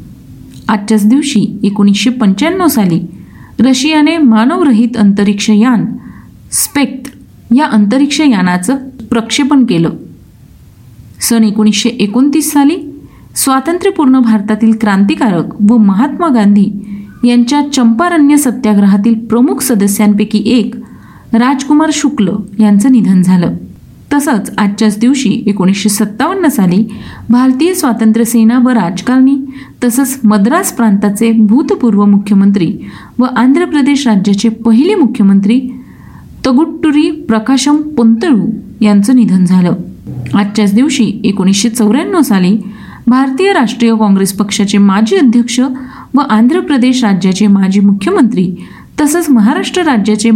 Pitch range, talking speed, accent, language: 210-265 Hz, 95 wpm, native, Marathi